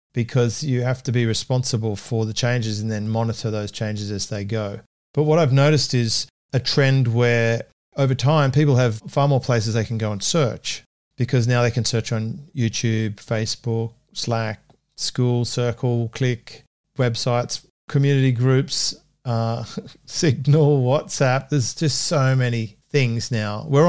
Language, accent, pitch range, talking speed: English, Australian, 110-135 Hz, 155 wpm